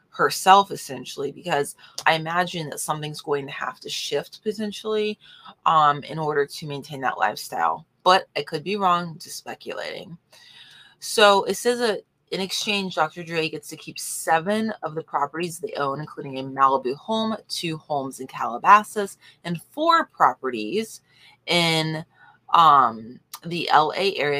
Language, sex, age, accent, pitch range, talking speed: English, female, 30-49, American, 140-180 Hz, 145 wpm